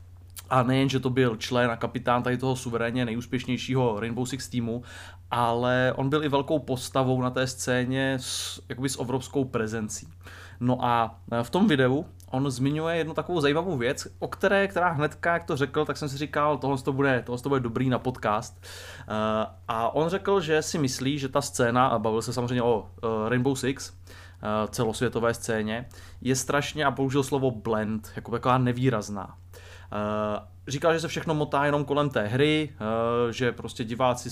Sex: male